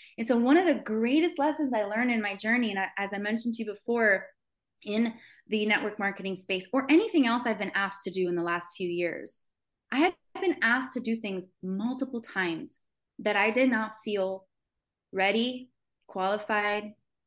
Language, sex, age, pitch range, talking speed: English, female, 20-39, 200-285 Hz, 185 wpm